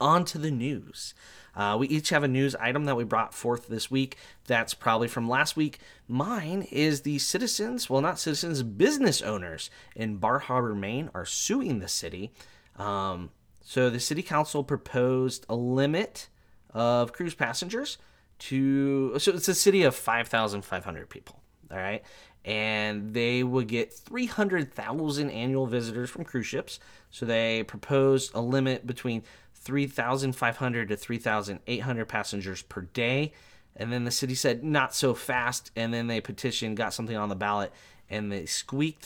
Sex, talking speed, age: male, 155 wpm, 20-39